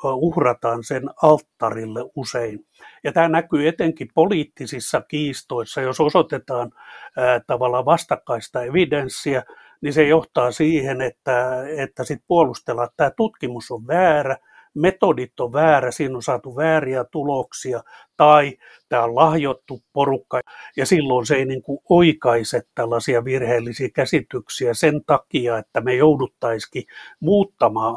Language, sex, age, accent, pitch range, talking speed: Finnish, male, 60-79, native, 125-155 Hz, 120 wpm